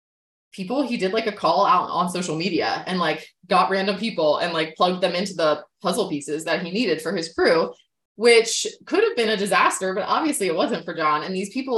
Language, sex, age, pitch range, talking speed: English, female, 20-39, 155-215 Hz, 225 wpm